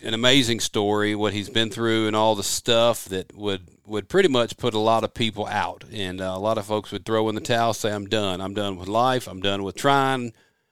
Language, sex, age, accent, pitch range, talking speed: English, male, 40-59, American, 100-115 Hz, 245 wpm